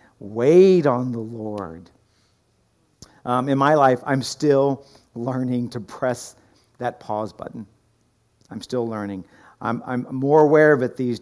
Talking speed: 140 wpm